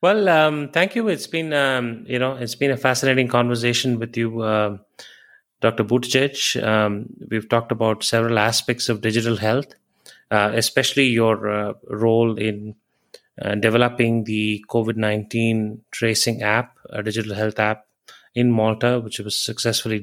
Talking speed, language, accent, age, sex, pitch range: 145 wpm, English, Indian, 30-49, male, 110-125 Hz